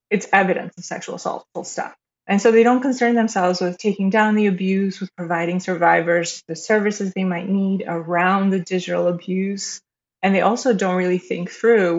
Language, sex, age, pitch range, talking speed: English, female, 20-39, 175-205 Hz, 180 wpm